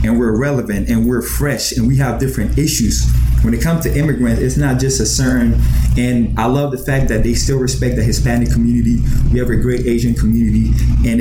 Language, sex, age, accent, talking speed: English, male, 20-39, American, 215 wpm